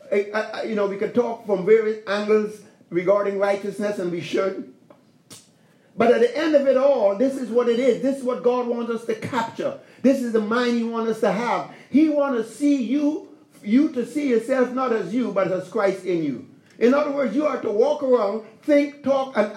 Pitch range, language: 205-270 Hz, English